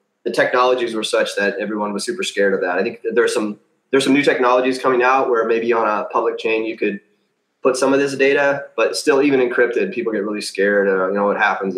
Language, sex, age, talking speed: English, male, 30-49, 240 wpm